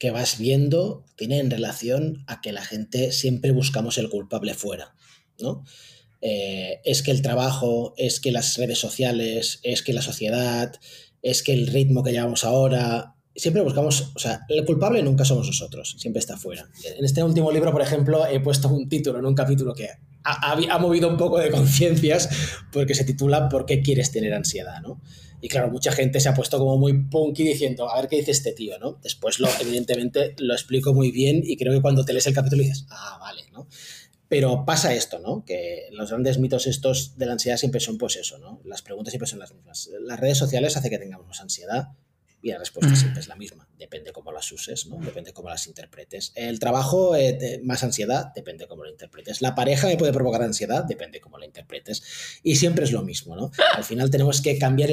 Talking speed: 215 wpm